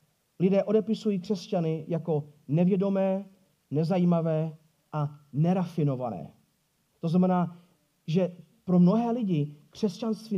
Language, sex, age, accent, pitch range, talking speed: Czech, male, 40-59, native, 165-215 Hz, 85 wpm